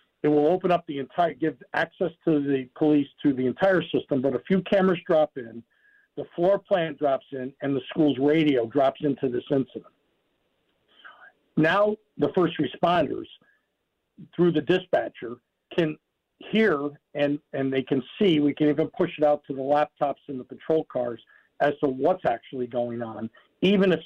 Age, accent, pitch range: 50-69, American, 140-180 Hz